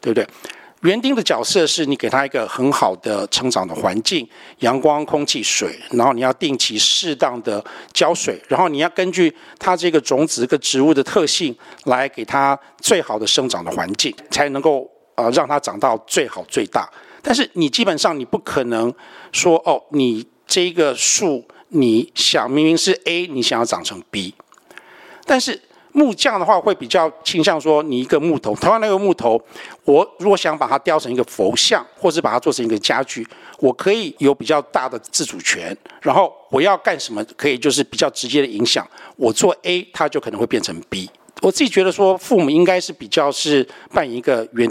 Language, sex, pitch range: Chinese, male, 135-195 Hz